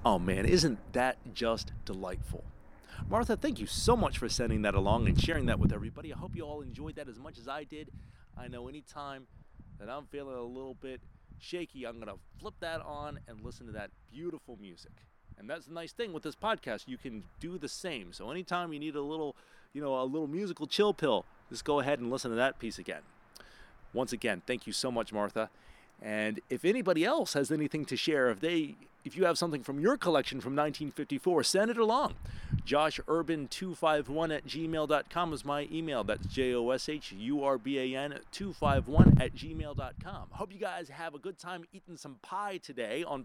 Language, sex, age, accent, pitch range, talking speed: English, male, 30-49, American, 120-160 Hz, 195 wpm